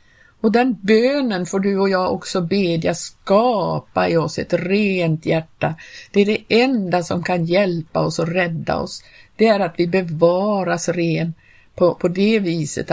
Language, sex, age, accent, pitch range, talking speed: Swedish, female, 50-69, native, 160-200 Hz, 165 wpm